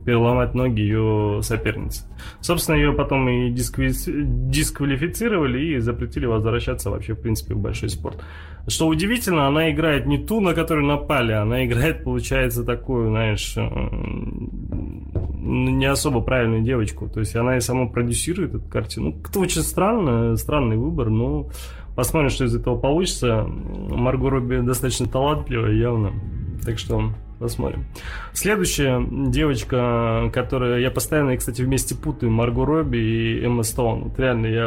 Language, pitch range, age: Russian, 110-135 Hz, 20-39